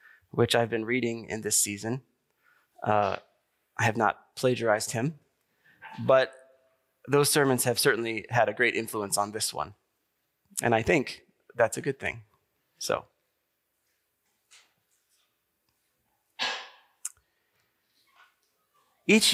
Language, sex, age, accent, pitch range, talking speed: English, male, 30-49, American, 115-155 Hz, 105 wpm